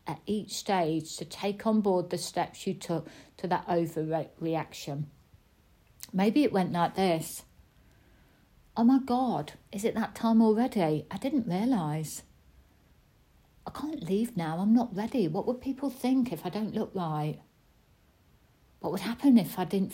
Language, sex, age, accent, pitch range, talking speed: English, female, 60-79, British, 160-215 Hz, 155 wpm